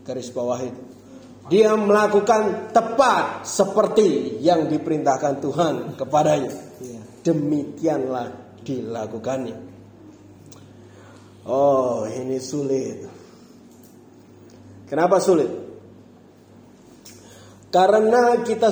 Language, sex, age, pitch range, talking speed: Indonesian, male, 30-49, 135-215 Hz, 60 wpm